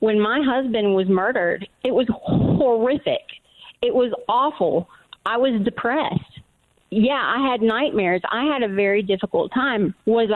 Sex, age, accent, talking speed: female, 40-59, American, 145 wpm